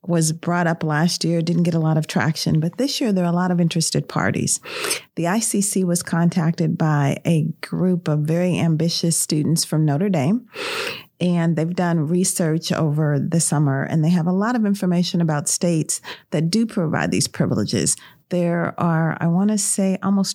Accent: American